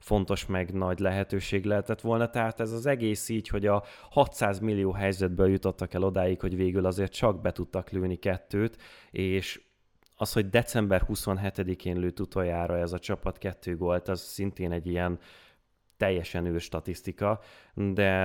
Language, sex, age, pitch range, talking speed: Hungarian, male, 20-39, 90-105 Hz, 155 wpm